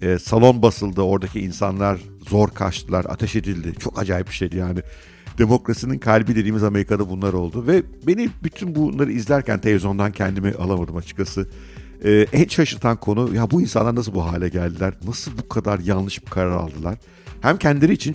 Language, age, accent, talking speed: Turkish, 60-79, native, 165 wpm